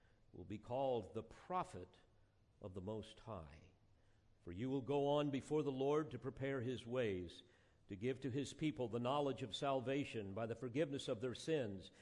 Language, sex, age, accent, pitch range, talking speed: English, male, 50-69, American, 110-145 Hz, 180 wpm